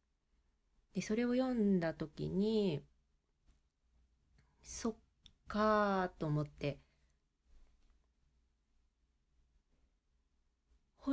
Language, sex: Japanese, female